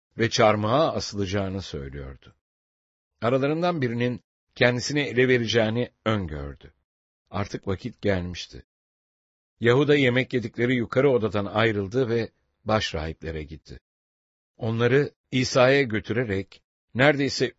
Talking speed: 90 wpm